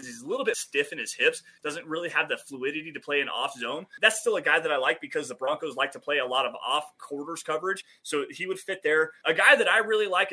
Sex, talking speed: male, 280 wpm